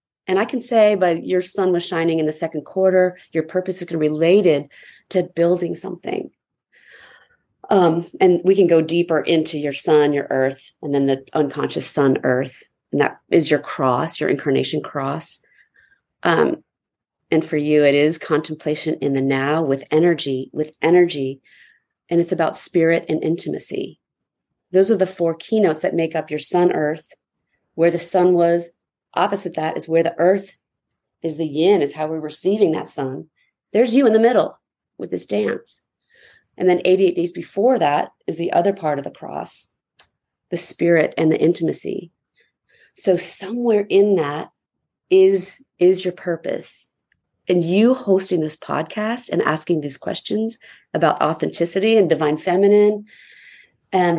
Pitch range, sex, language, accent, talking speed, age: 155-190 Hz, female, English, American, 160 wpm, 40-59